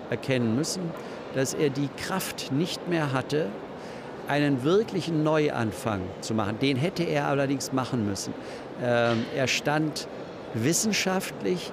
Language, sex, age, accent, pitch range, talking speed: German, male, 60-79, German, 120-155 Hz, 120 wpm